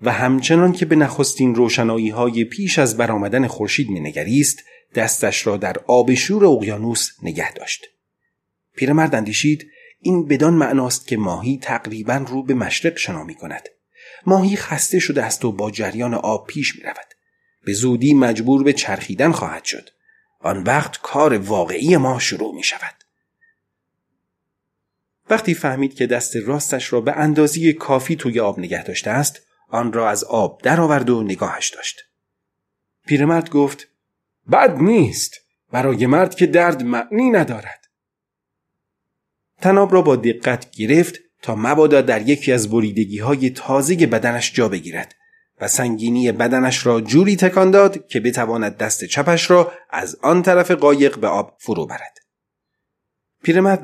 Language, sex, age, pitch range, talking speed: Persian, male, 30-49, 120-175 Hz, 145 wpm